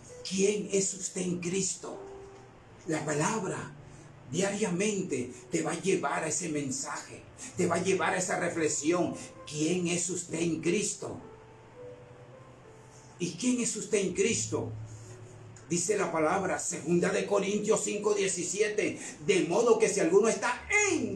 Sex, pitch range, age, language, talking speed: male, 155-255 Hz, 50-69, Spanish, 135 wpm